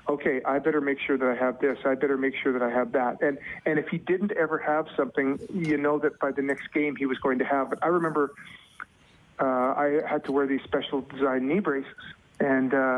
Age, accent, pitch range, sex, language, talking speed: 40-59, American, 135-150 Hz, male, English, 235 wpm